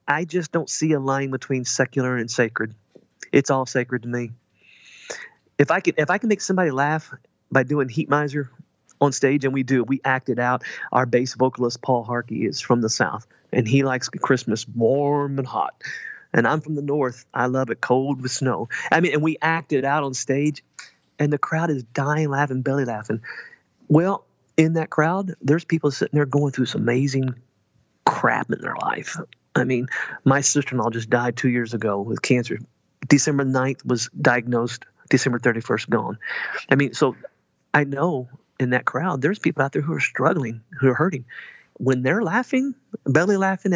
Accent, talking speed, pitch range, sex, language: American, 190 wpm, 125-150 Hz, male, English